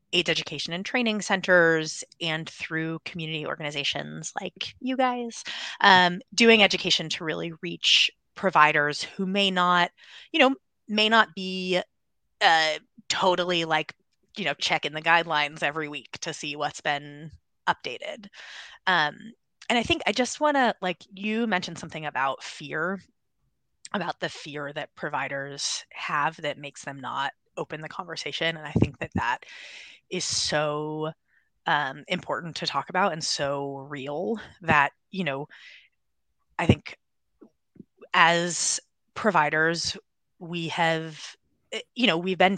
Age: 20-39